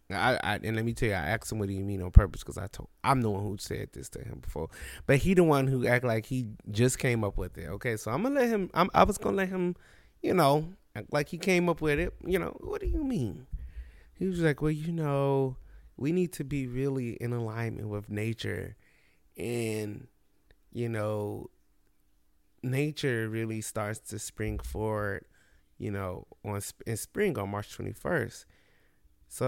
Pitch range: 100-145 Hz